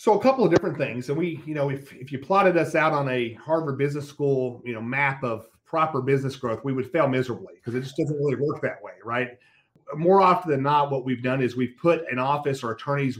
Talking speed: 250 wpm